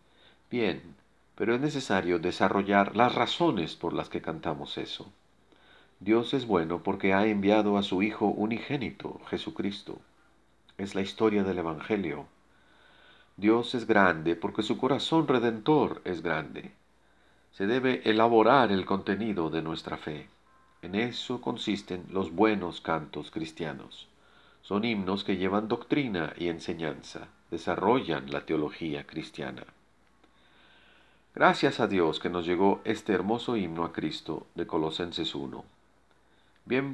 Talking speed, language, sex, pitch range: 125 wpm, Spanish, male, 85-110 Hz